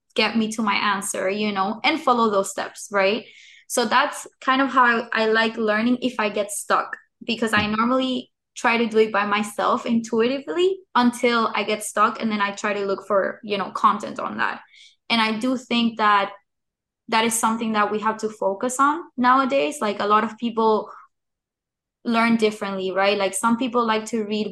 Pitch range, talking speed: 200-230 Hz, 195 wpm